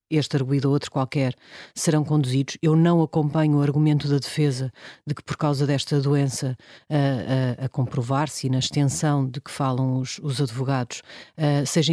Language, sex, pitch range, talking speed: Portuguese, female, 140-170 Hz, 175 wpm